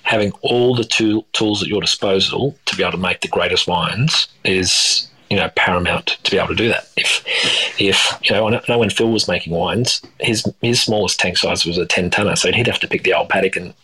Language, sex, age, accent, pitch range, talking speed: English, male, 30-49, Australian, 95-115 Hz, 240 wpm